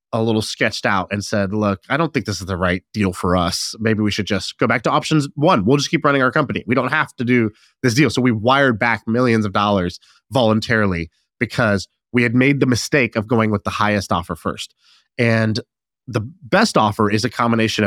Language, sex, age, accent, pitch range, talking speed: English, male, 30-49, American, 105-130 Hz, 225 wpm